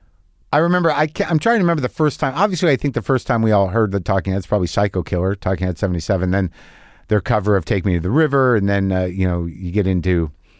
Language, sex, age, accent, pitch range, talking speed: English, male, 50-69, American, 90-140 Hz, 255 wpm